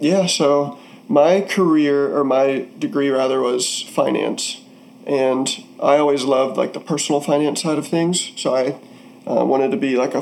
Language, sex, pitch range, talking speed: English, male, 130-150 Hz, 170 wpm